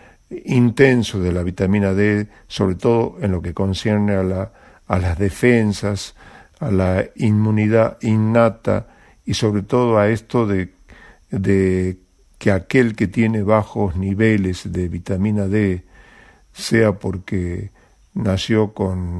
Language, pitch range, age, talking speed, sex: Spanish, 95-115 Hz, 50-69, 120 wpm, male